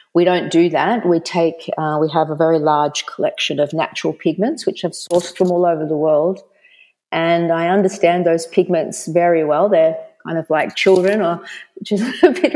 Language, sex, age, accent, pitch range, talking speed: English, female, 40-59, Australian, 155-185 Hz, 195 wpm